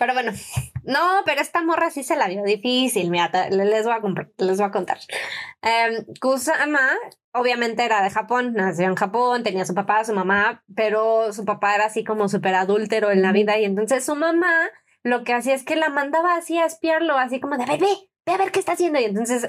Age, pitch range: 20-39, 215-295 Hz